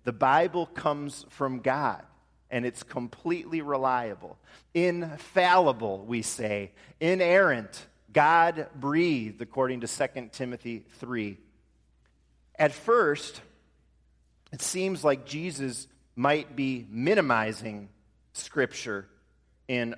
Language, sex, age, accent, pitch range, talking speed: English, male, 40-59, American, 115-170 Hz, 95 wpm